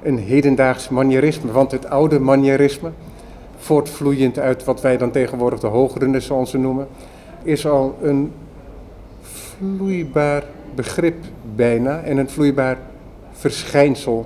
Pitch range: 120-145 Hz